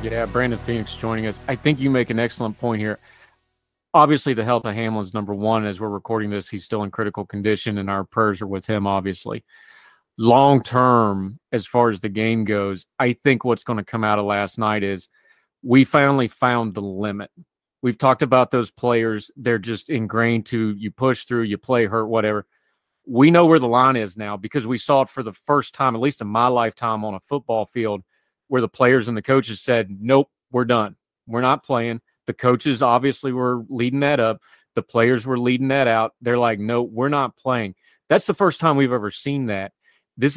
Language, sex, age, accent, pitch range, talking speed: English, male, 40-59, American, 110-130 Hz, 210 wpm